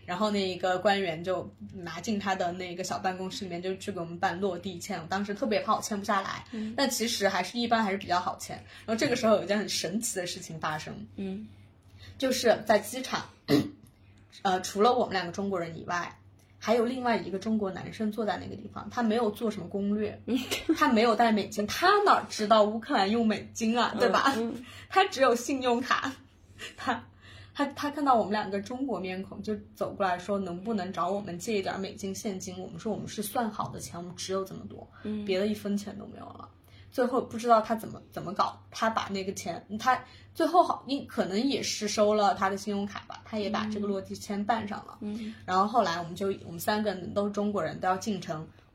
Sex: female